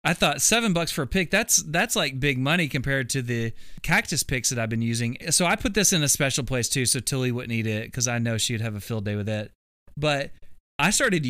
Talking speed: 255 wpm